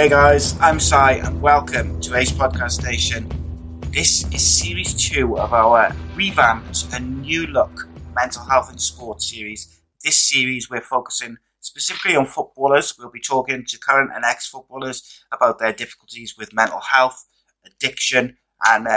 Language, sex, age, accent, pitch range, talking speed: English, male, 30-49, British, 110-130 Hz, 150 wpm